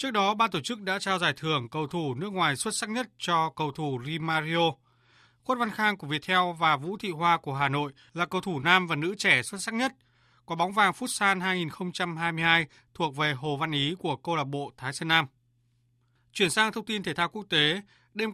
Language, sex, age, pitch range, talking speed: Vietnamese, male, 20-39, 145-190 Hz, 225 wpm